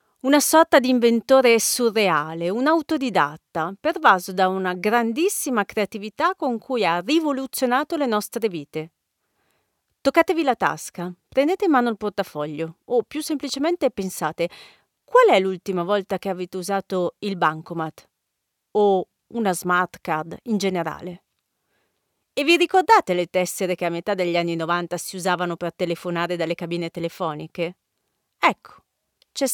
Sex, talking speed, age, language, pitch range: female, 135 wpm, 40-59, Italian, 180-265 Hz